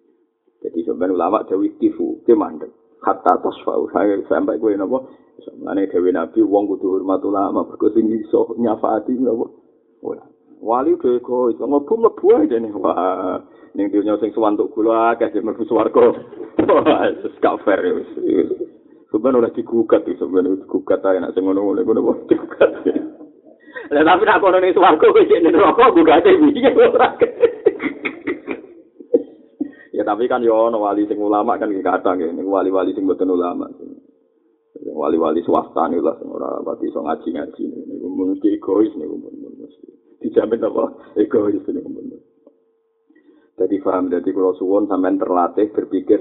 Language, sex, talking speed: Malay, male, 125 wpm